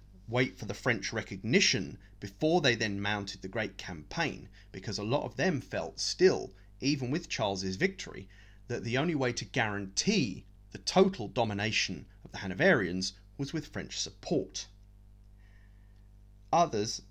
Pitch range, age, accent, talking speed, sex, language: 100-130 Hz, 30-49, British, 140 wpm, male, English